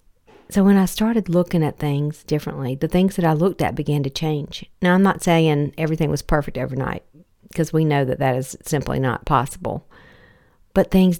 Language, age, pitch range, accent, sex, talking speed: English, 50-69, 135-165 Hz, American, female, 195 wpm